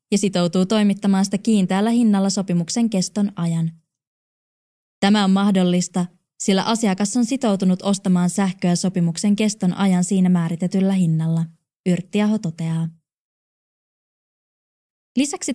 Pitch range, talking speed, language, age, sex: 175-210 Hz, 105 wpm, Finnish, 20-39, female